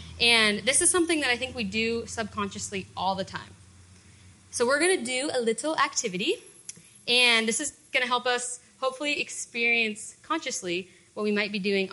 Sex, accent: female, American